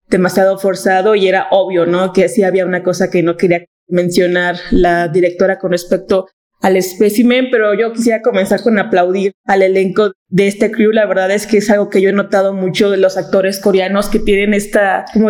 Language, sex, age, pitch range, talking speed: Spanish, female, 20-39, 185-210 Hz, 200 wpm